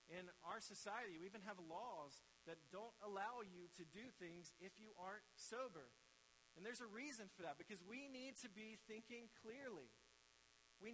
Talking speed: 175 wpm